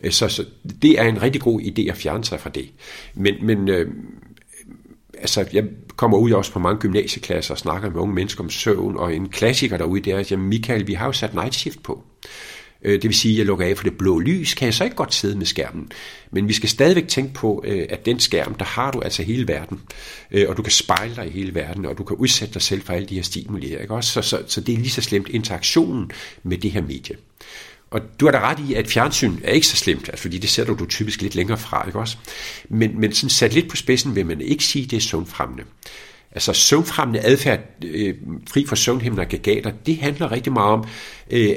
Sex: male